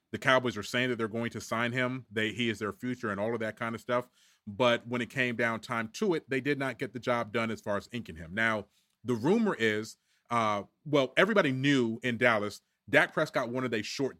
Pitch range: 110-130 Hz